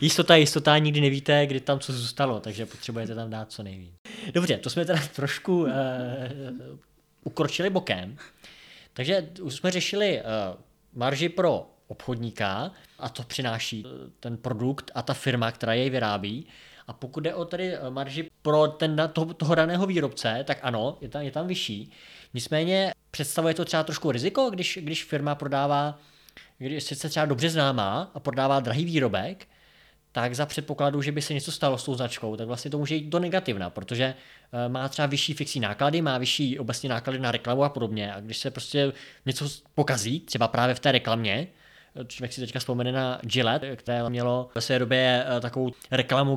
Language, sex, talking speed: Czech, male, 175 wpm